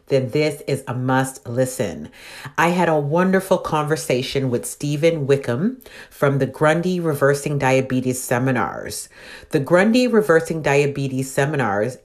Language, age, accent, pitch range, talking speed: English, 40-59, American, 130-165 Hz, 125 wpm